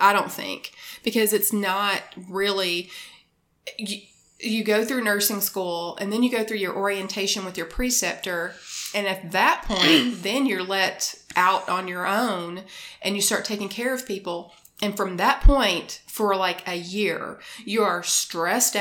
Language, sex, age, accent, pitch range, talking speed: English, female, 30-49, American, 180-210 Hz, 165 wpm